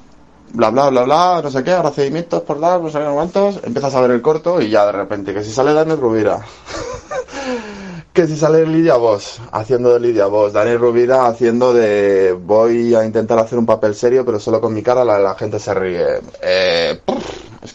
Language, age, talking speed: Spanish, 20-39, 200 wpm